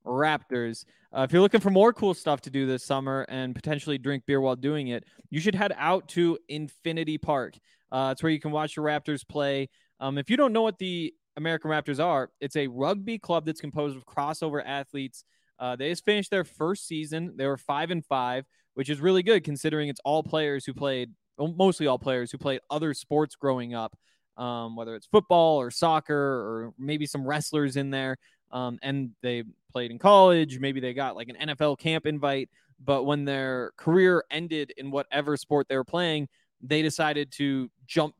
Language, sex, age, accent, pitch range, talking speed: English, male, 20-39, American, 130-155 Hz, 200 wpm